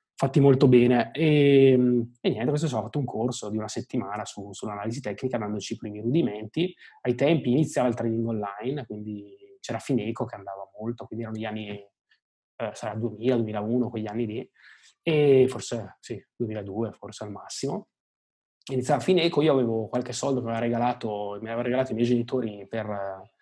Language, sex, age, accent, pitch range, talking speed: Italian, male, 20-39, native, 105-130 Hz, 175 wpm